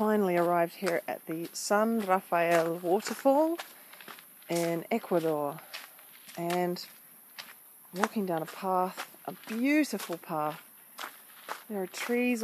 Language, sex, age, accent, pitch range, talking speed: English, female, 40-59, Australian, 175-220 Hz, 100 wpm